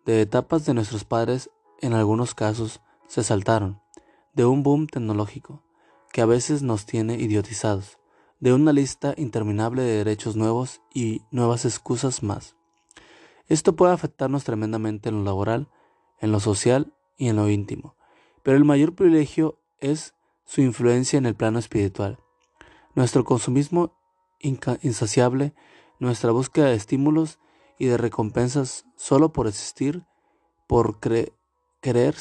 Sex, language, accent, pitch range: male, Spanish, Mexican, 110-140 Hz